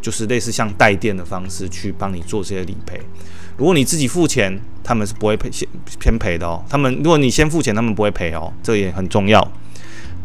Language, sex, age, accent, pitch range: Chinese, male, 20-39, native, 95-125 Hz